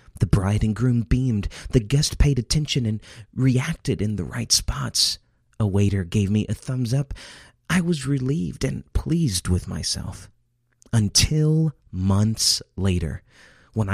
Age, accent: 30-49, American